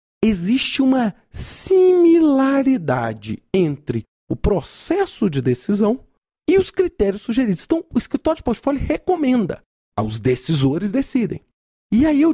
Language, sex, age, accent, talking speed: Portuguese, male, 40-59, Brazilian, 115 wpm